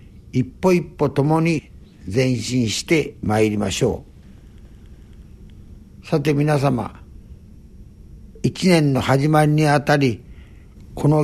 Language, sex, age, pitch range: Japanese, male, 60-79, 110-150 Hz